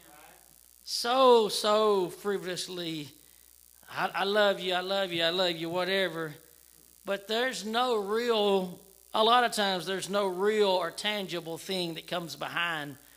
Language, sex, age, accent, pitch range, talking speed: English, male, 40-59, American, 160-215 Hz, 140 wpm